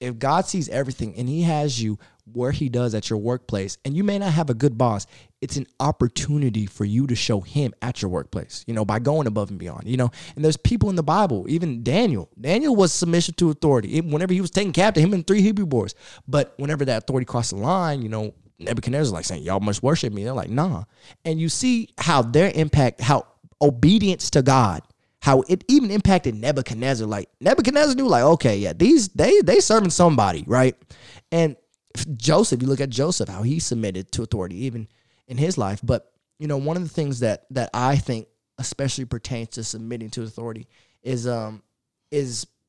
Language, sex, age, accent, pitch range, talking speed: English, male, 20-39, American, 115-150 Hz, 205 wpm